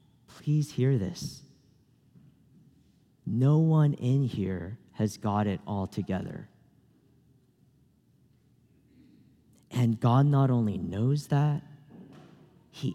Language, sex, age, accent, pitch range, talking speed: English, male, 40-59, American, 125-165 Hz, 90 wpm